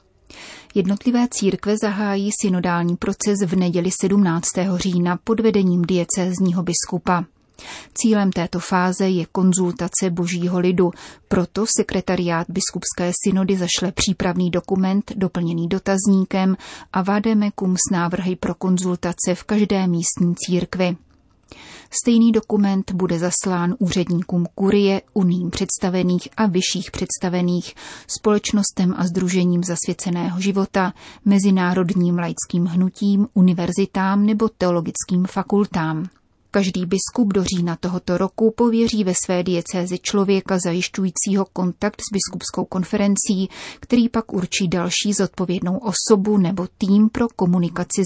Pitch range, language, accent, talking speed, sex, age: 180-200 Hz, Czech, native, 110 wpm, female, 30-49